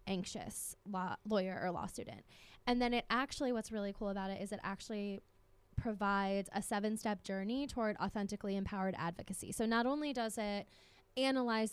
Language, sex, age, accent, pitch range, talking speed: English, female, 10-29, American, 195-220 Hz, 160 wpm